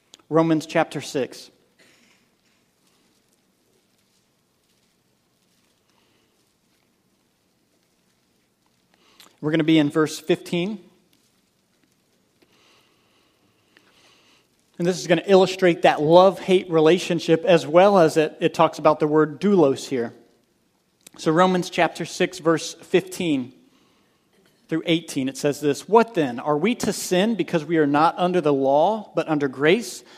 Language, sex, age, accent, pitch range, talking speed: English, male, 40-59, American, 155-190 Hz, 115 wpm